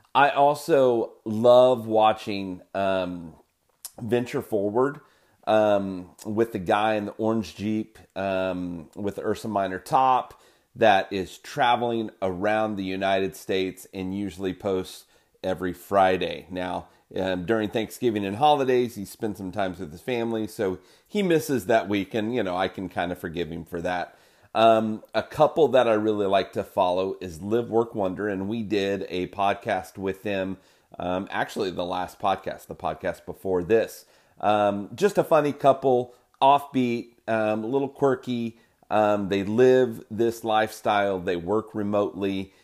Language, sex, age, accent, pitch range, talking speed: English, male, 30-49, American, 95-115 Hz, 155 wpm